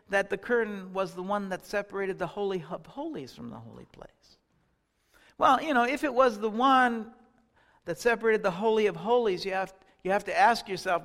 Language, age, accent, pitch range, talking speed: English, 60-79, American, 200-255 Hz, 200 wpm